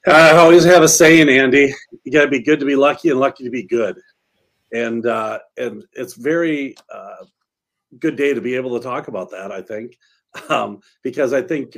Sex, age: male, 50-69